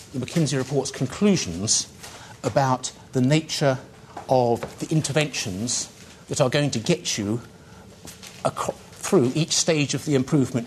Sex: male